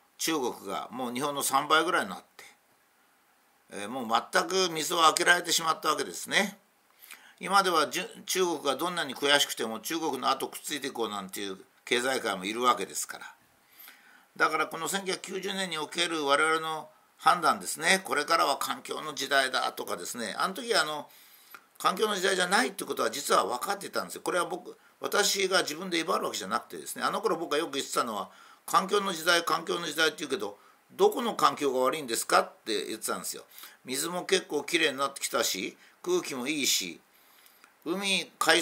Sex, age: male, 60-79